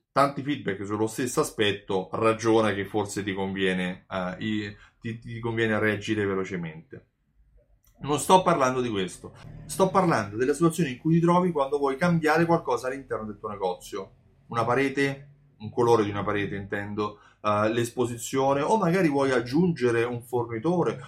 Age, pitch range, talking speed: 30-49, 105-145 Hz, 140 wpm